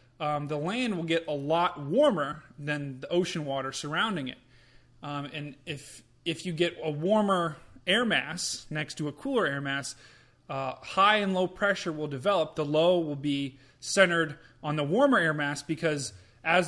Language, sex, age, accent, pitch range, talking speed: English, male, 30-49, American, 145-190 Hz, 175 wpm